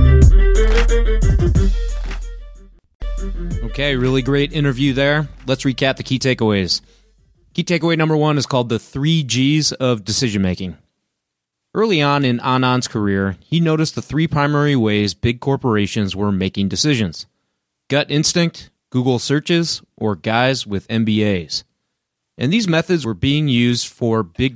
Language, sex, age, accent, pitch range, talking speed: English, male, 30-49, American, 105-145 Hz, 130 wpm